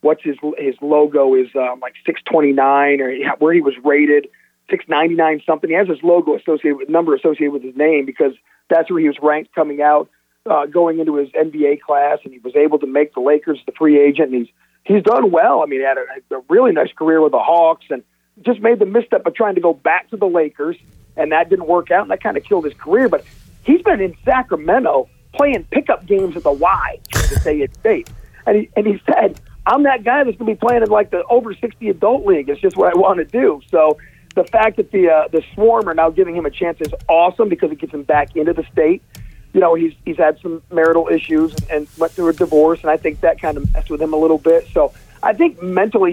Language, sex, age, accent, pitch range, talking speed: English, male, 40-59, American, 150-210 Hz, 245 wpm